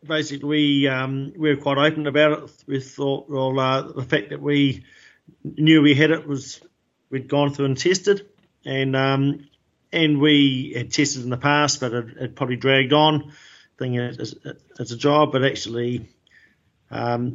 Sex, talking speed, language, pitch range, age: male, 175 wpm, English, 130-145 Hz, 40-59